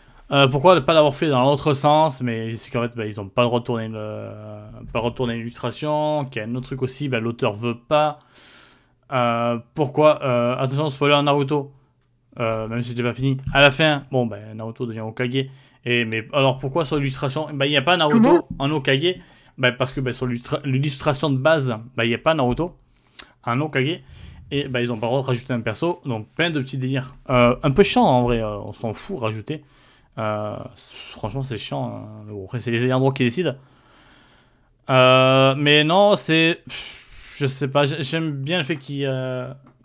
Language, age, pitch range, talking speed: French, 20-39, 120-140 Hz, 215 wpm